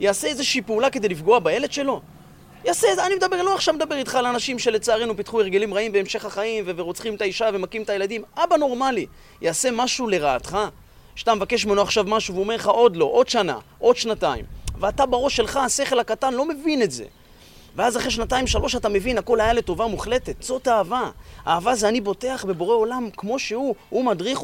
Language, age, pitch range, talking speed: Hebrew, 30-49, 190-250 Hz, 195 wpm